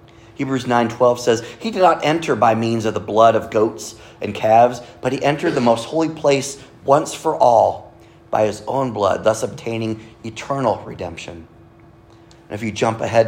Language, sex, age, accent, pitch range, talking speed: English, male, 40-59, American, 110-155 Hz, 175 wpm